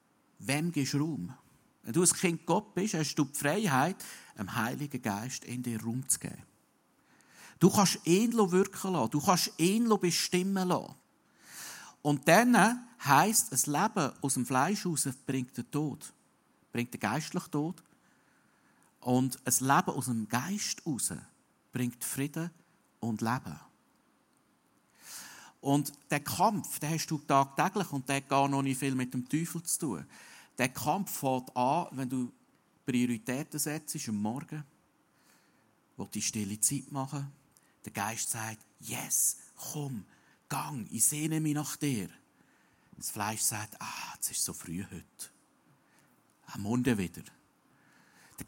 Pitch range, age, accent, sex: 125-170 Hz, 50-69, Austrian, male